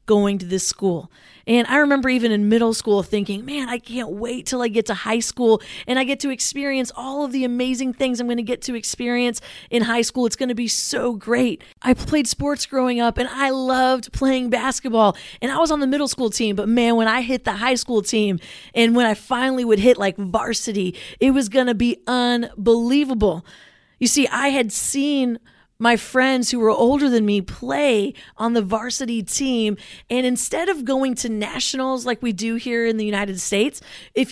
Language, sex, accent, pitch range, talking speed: English, female, American, 220-260 Hz, 210 wpm